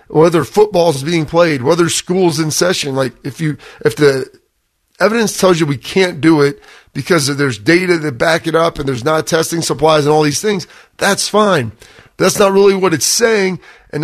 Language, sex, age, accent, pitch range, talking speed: English, male, 40-59, American, 150-185 Hz, 195 wpm